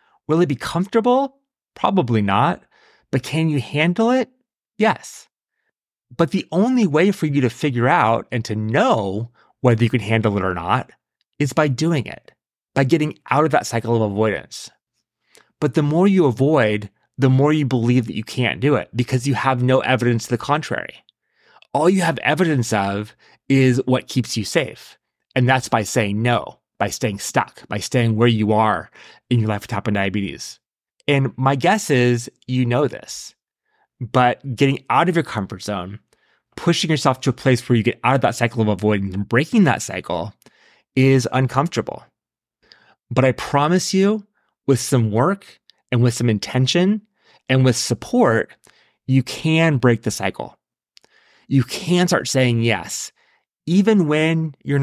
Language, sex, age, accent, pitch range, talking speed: English, male, 30-49, American, 120-160 Hz, 170 wpm